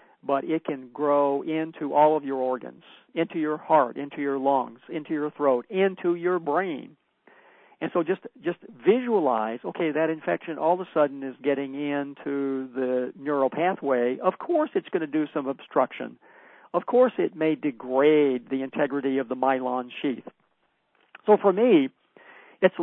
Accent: American